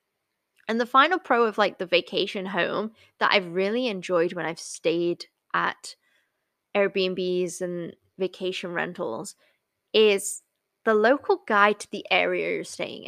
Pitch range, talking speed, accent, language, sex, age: 185-240 Hz, 140 wpm, British, English, female, 10-29